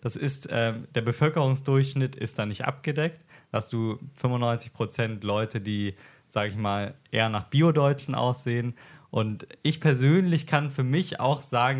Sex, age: male, 20-39